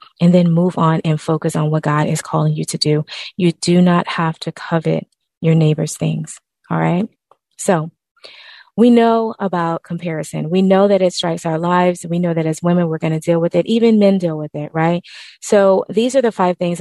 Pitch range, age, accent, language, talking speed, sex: 155-175 Hz, 20-39, American, English, 215 wpm, female